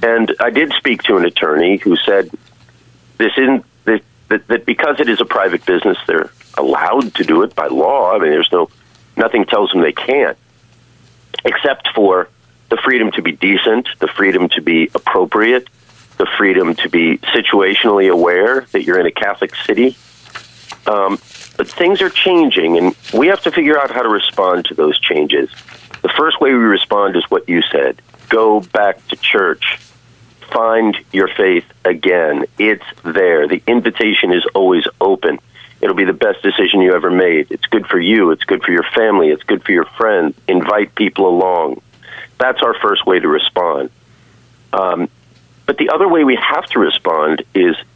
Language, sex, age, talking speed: English, male, 40-59, 175 wpm